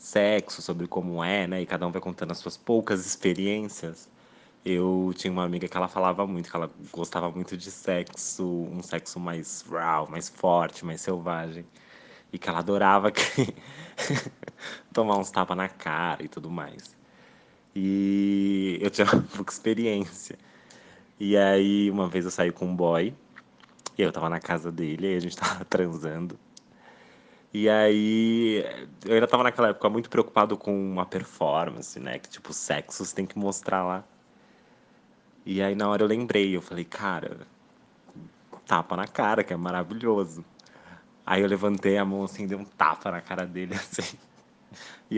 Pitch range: 90-100 Hz